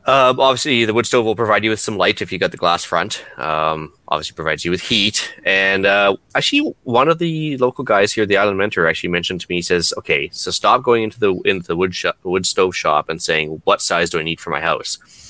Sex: male